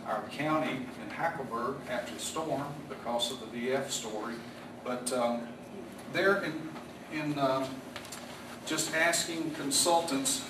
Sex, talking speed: male, 120 wpm